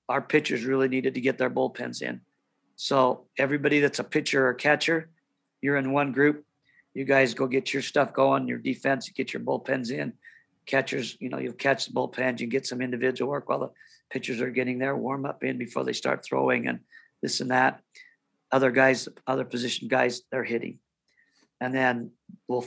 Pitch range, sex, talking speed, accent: 125-140 Hz, male, 190 wpm, American